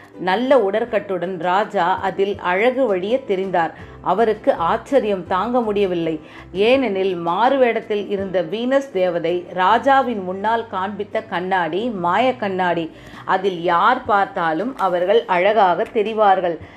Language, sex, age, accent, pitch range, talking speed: Tamil, female, 30-49, native, 180-230 Hz, 100 wpm